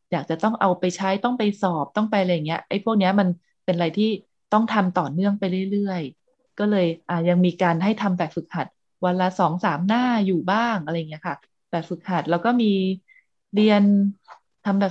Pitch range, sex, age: 175-215 Hz, female, 20-39